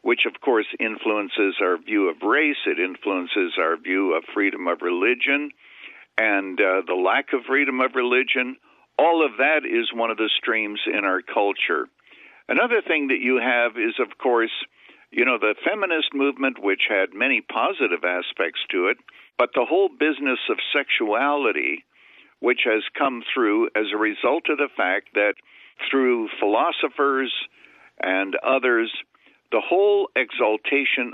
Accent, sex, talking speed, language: American, male, 150 wpm, English